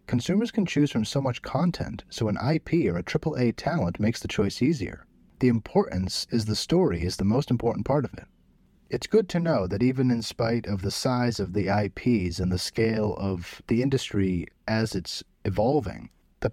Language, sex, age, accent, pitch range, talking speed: English, male, 30-49, American, 90-140 Hz, 195 wpm